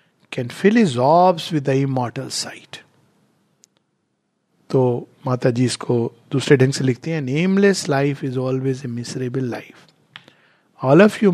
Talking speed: 115 wpm